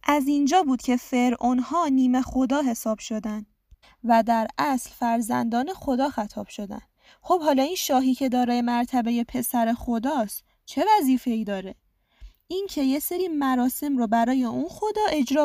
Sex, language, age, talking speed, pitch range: female, Persian, 20-39, 155 wpm, 230-275 Hz